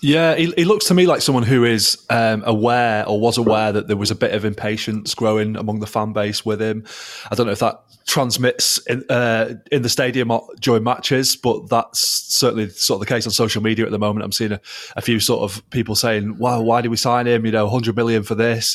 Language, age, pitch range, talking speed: English, 20-39, 105-120 Hz, 240 wpm